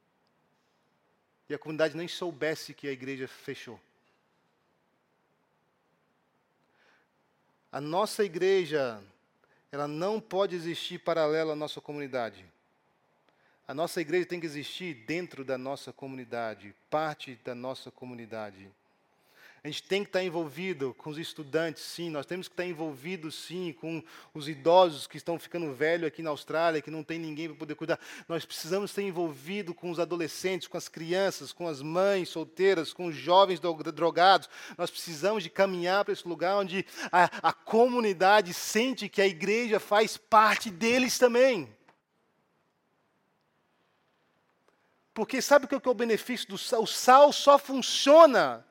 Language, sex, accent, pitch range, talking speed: English, male, Brazilian, 150-195 Hz, 145 wpm